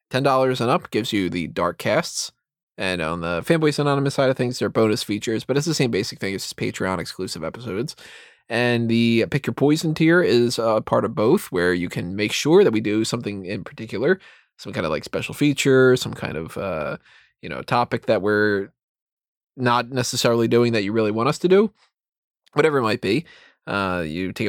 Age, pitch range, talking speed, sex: 20-39, 105-145 Hz, 205 wpm, male